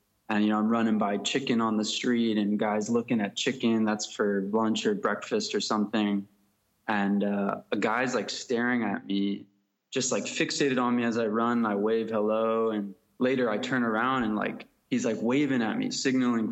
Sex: male